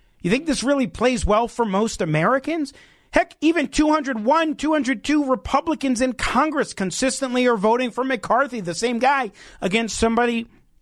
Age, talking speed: 40-59, 145 wpm